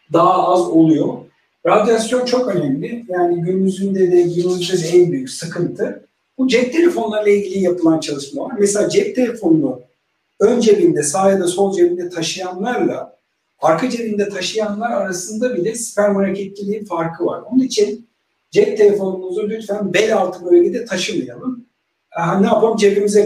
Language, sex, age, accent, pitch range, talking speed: Turkish, male, 50-69, native, 170-220 Hz, 140 wpm